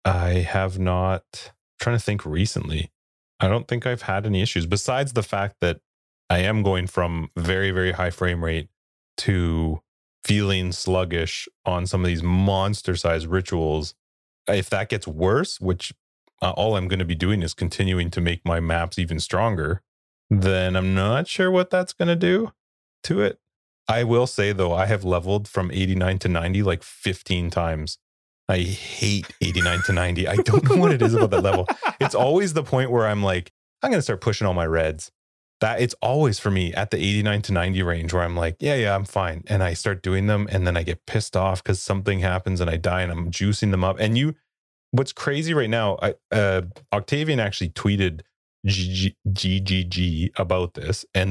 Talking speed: 200 wpm